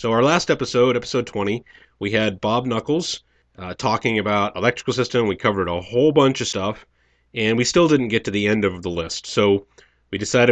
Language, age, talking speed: English, 30-49, 205 wpm